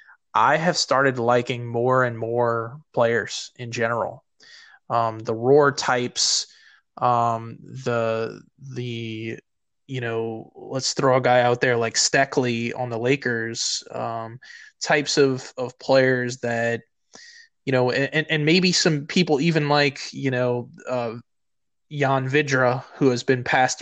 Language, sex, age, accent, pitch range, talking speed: English, male, 20-39, American, 120-135 Hz, 135 wpm